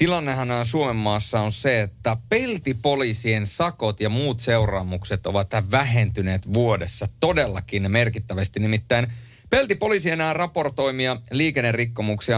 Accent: native